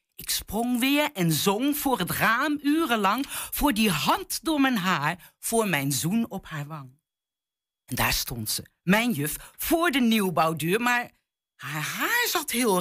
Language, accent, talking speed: Dutch, Dutch, 165 wpm